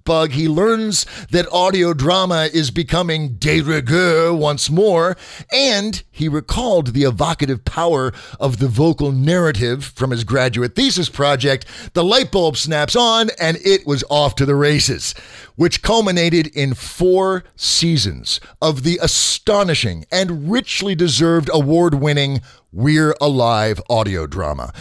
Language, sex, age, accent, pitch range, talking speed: English, male, 50-69, American, 125-185 Hz, 135 wpm